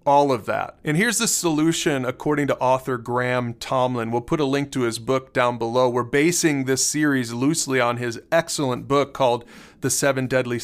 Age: 40-59